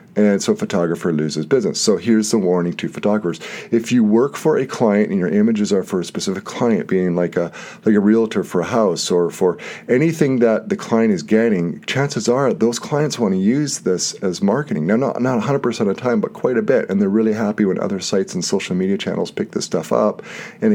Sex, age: male, 40-59